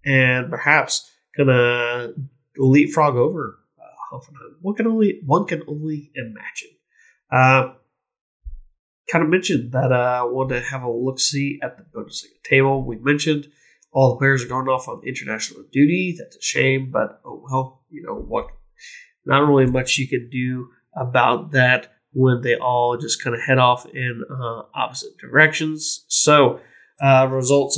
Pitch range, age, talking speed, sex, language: 125-155 Hz, 30-49, 160 wpm, male, English